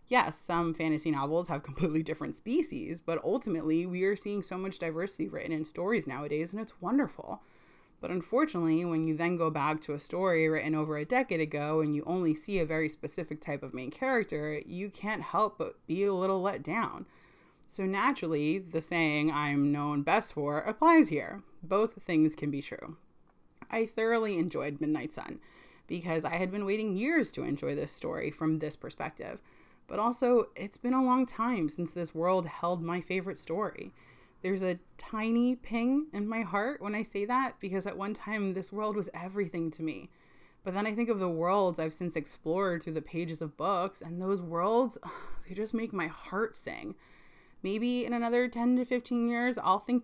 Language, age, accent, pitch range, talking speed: English, 20-39, American, 160-215 Hz, 190 wpm